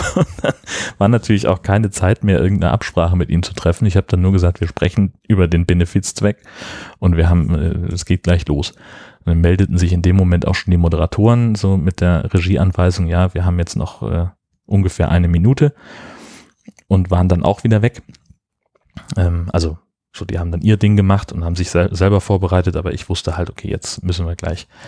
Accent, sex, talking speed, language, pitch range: German, male, 200 wpm, German, 85-100 Hz